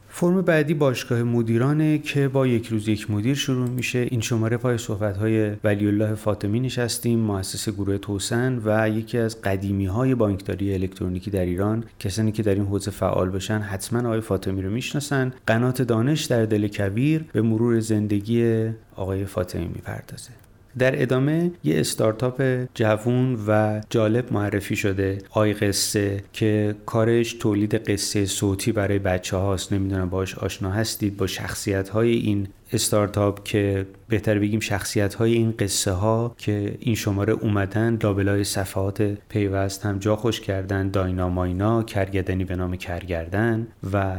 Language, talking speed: Persian, 150 wpm